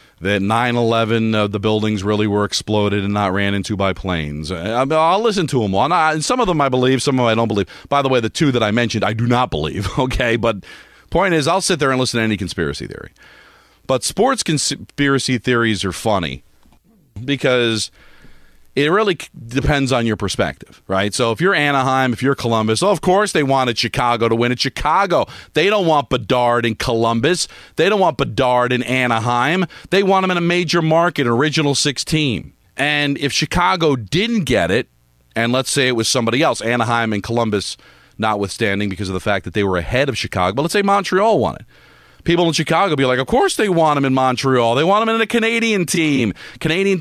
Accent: American